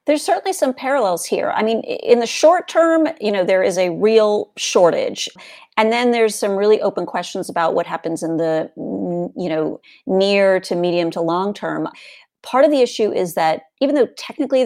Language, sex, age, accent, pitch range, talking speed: English, female, 30-49, American, 175-235 Hz, 190 wpm